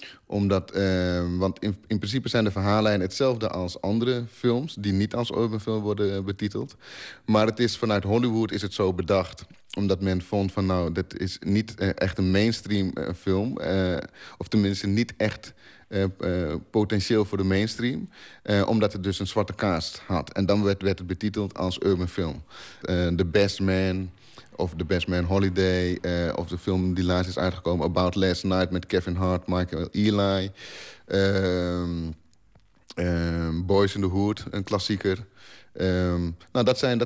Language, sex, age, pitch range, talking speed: Dutch, male, 30-49, 90-105 Hz, 175 wpm